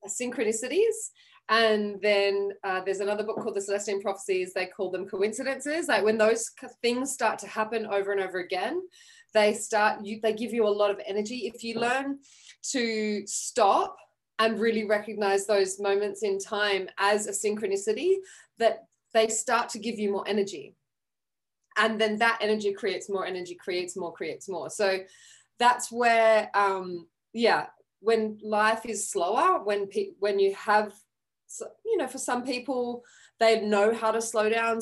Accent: Australian